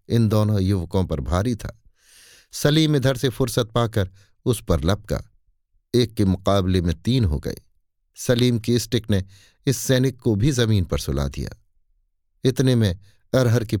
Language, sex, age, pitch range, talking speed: Hindi, male, 60-79, 90-120 Hz, 160 wpm